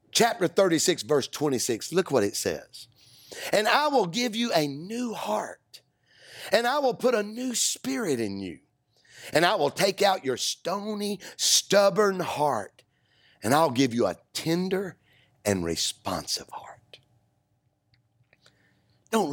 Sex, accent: male, American